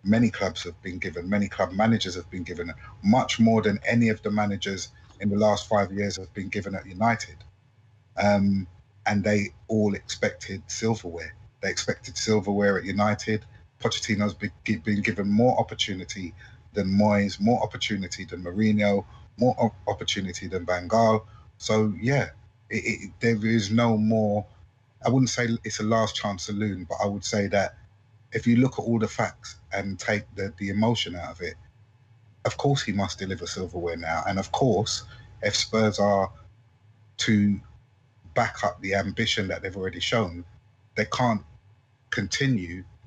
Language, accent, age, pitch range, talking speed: English, British, 30-49, 95-115 Hz, 160 wpm